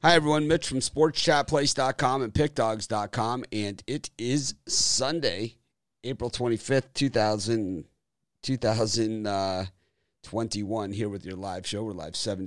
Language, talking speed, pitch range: English, 110 wpm, 90-115 Hz